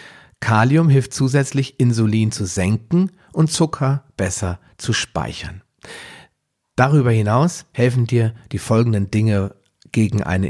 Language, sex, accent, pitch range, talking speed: German, male, German, 100-130 Hz, 115 wpm